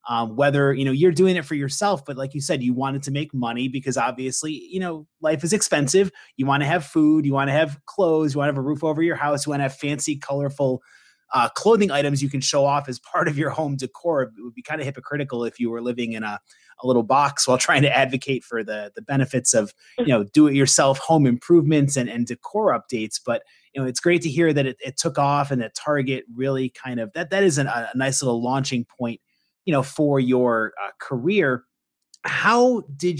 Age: 30-49